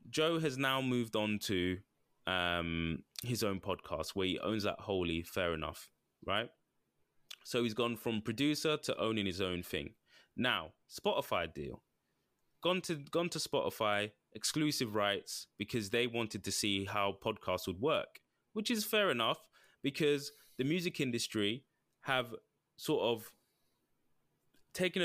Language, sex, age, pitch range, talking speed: English, male, 20-39, 90-120 Hz, 140 wpm